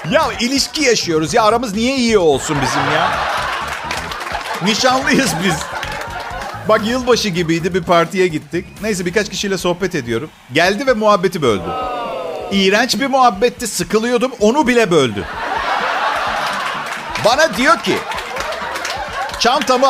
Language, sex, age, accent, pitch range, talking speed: Turkish, male, 50-69, native, 175-230 Hz, 115 wpm